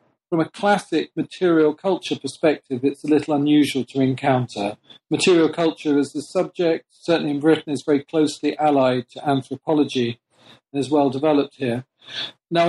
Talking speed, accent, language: 150 wpm, British, English